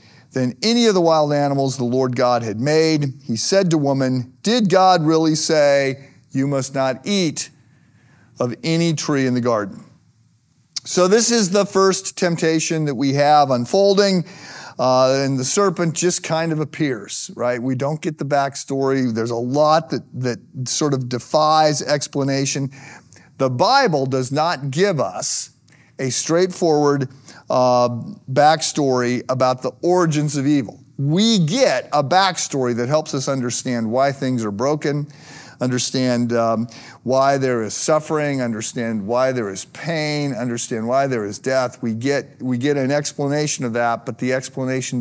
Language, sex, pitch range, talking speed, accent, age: English, male, 125-155 Hz, 155 wpm, American, 50-69